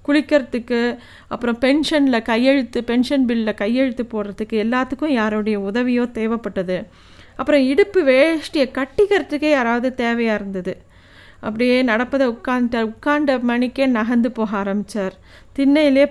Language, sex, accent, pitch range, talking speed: Tamil, female, native, 220-265 Hz, 105 wpm